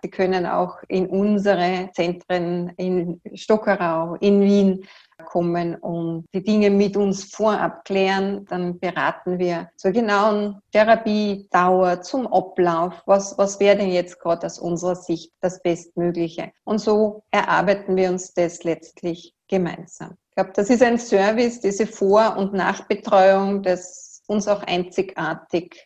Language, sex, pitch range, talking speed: German, female, 180-205 Hz, 135 wpm